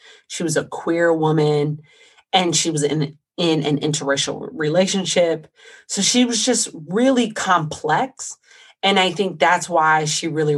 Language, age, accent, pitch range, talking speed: English, 30-49, American, 150-200 Hz, 145 wpm